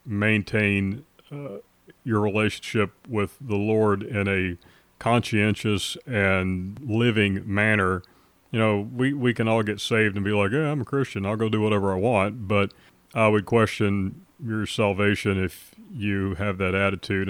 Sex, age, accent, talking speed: male, 40-59, American, 155 wpm